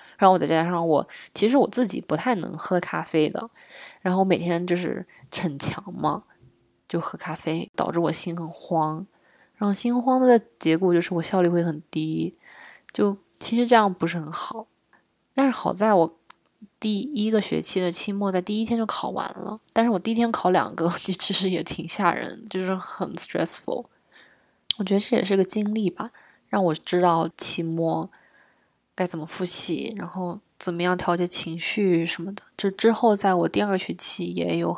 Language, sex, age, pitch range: Chinese, female, 20-39, 170-205 Hz